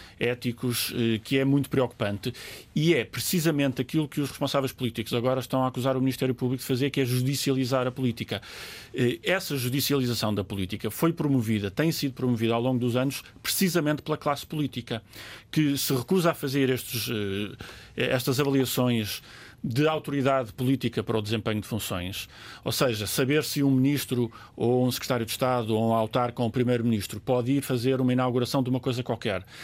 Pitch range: 115-135 Hz